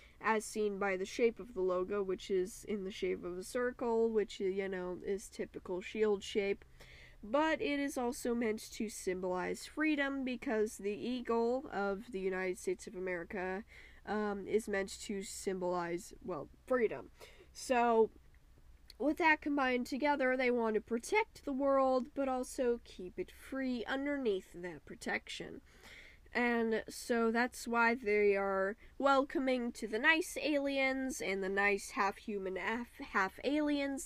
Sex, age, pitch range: female, 10-29, 195-265 Hz